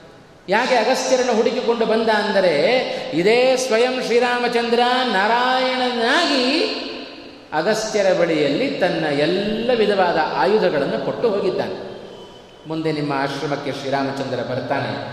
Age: 30-49